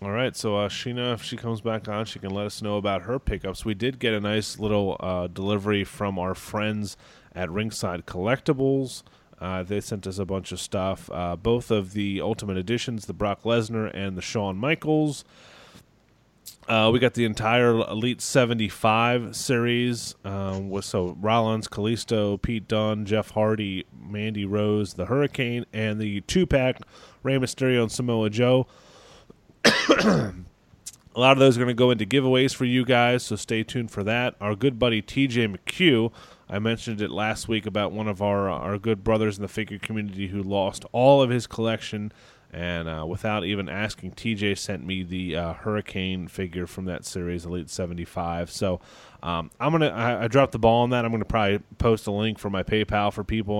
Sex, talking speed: male, 185 wpm